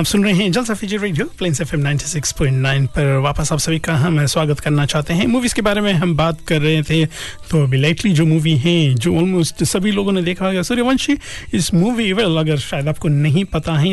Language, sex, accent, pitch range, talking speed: Hindi, male, native, 145-180 Hz, 140 wpm